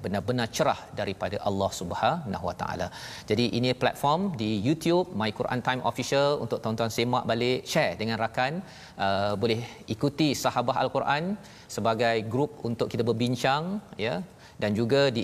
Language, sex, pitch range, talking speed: Malayalam, male, 115-140 Hz, 140 wpm